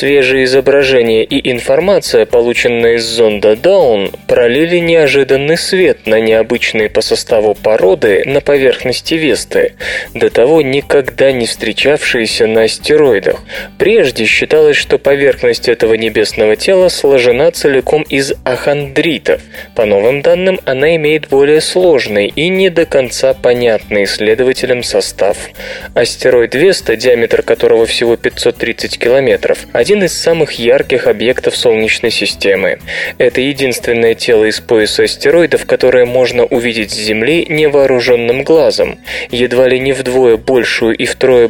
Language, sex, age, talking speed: Russian, male, 20-39, 125 wpm